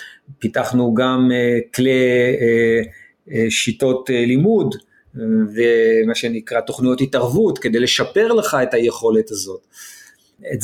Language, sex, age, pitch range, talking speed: Hebrew, male, 40-59, 120-170 Hz, 90 wpm